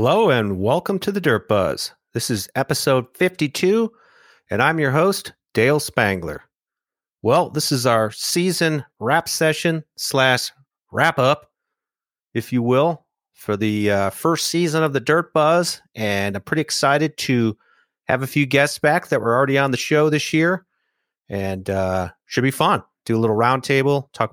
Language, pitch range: English, 115-150 Hz